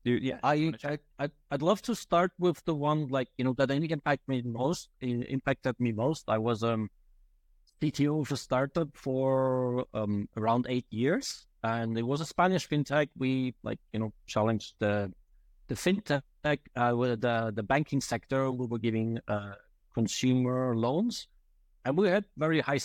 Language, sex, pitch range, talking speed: English, male, 110-145 Hz, 170 wpm